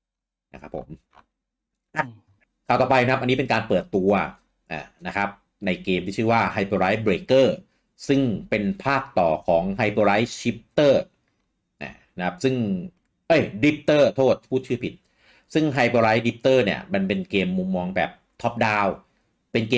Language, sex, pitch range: Thai, male, 100-130 Hz